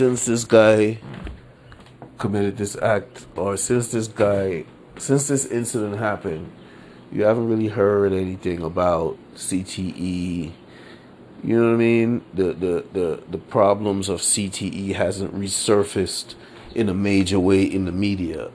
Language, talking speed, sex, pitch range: English, 135 wpm, male, 95-115 Hz